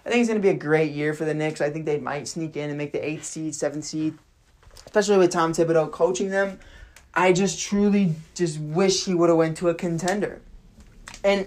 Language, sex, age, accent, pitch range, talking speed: English, male, 20-39, American, 155-190 Hz, 230 wpm